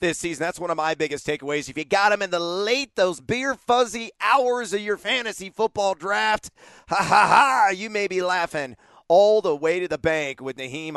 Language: English